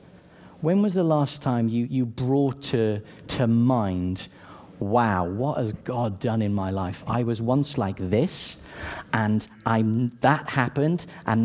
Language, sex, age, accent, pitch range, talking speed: English, male, 40-59, British, 110-145 Hz, 150 wpm